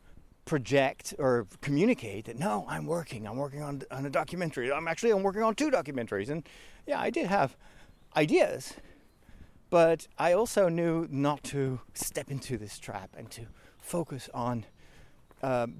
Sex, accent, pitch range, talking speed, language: male, American, 125-175 Hz, 155 wpm, English